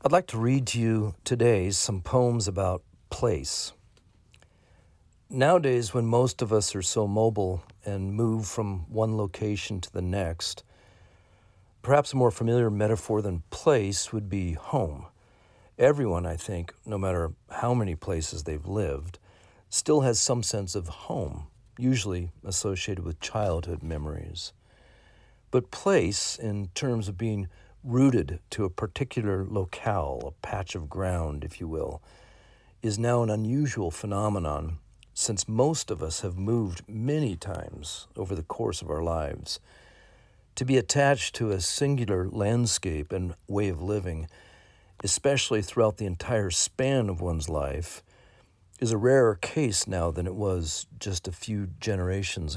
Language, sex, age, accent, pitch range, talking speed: English, male, 50-69, American, 90-115 Hz, 145 wpm